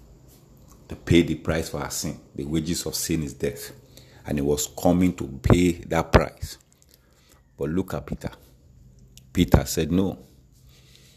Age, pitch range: 50-69, 70-85 Hz